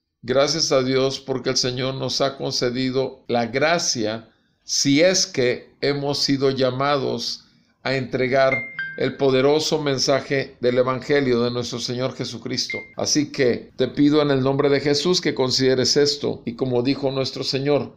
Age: 50-69